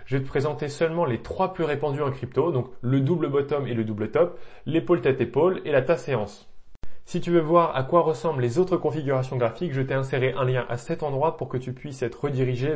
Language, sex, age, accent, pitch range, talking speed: French, male, 20-39, French, 125-165 Hz, 225 wpm